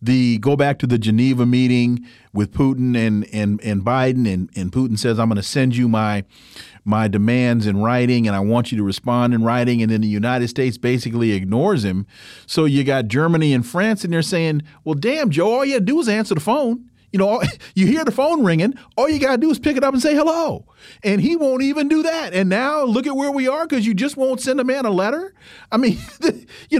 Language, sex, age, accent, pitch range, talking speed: English, male, 40-59, American, 120-175 Hz, 240 wpm